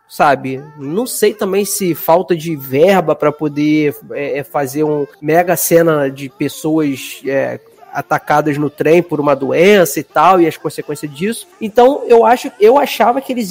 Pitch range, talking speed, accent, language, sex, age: 165-235 Hz, 155 wpm, Brazilian, Portuguese, male, 20-39